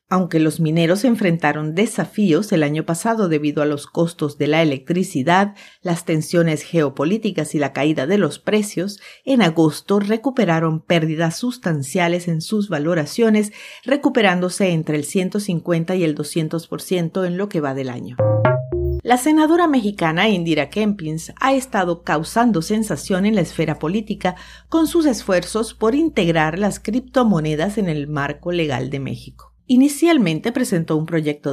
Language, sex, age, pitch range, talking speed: Spanish, female, 50-69, 155-215 Hz, 140 wpm